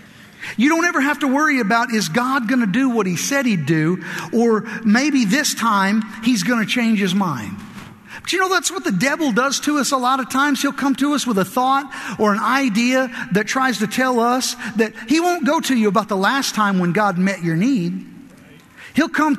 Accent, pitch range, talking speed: American, 210-280 Hz, 220 wpm